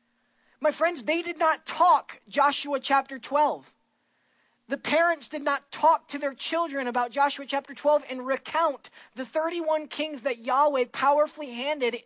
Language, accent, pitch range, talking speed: English, American, 205-260 Hz, 150 wpm